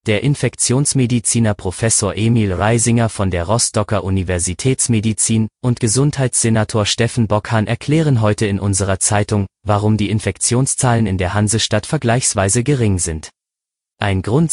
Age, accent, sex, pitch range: 30-49, German, male, 100-120 Hz